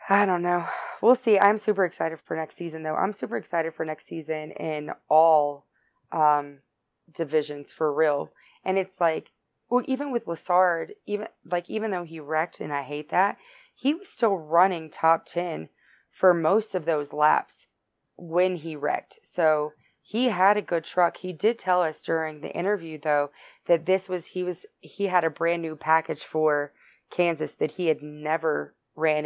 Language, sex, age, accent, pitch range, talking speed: English, female, 20-39, American, 150-180 Hz, 180 wpm